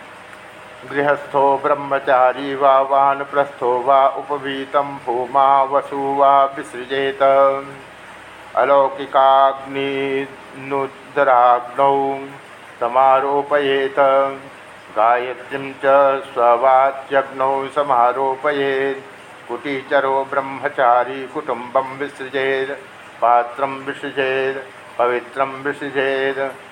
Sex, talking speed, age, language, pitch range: male, 45 wpm, 60-79, Hindi, 130-135 Hz